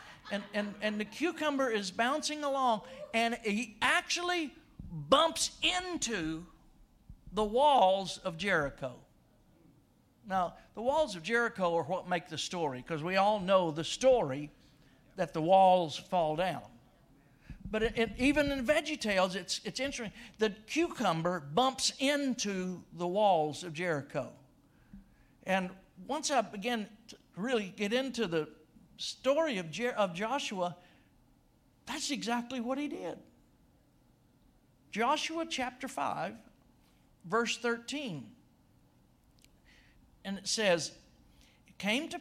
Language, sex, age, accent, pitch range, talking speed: English, male, 60-79, American, 180-250 Hz, 120 wpm